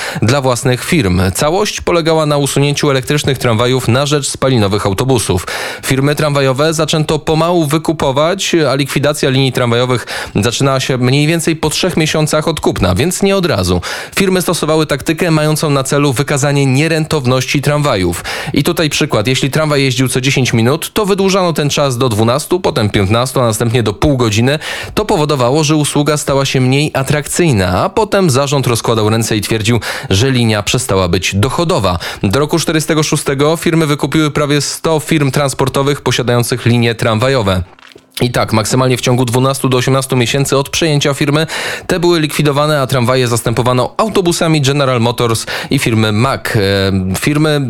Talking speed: 155 wpm